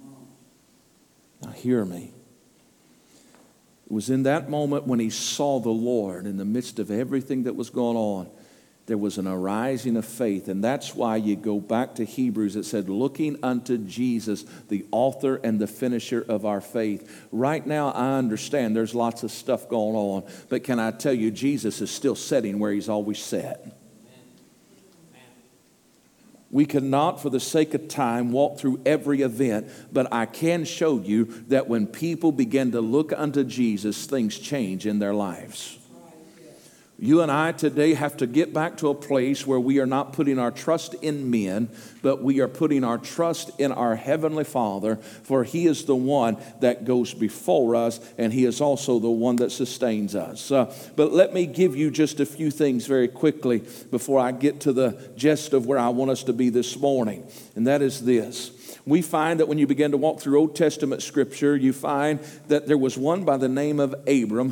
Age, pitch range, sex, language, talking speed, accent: 50-69, 115-145 Hz, male, English, 190 wpm, American